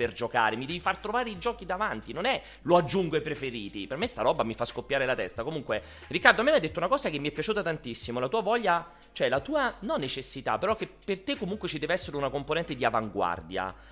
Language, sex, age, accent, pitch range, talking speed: Italian, male, 30-49, native, 125-190 Hz, 245 wpm